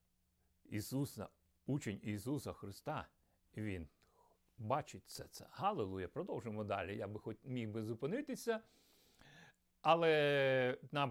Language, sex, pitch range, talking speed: Ukrainian, male, 120-160 Hz, 90 wpm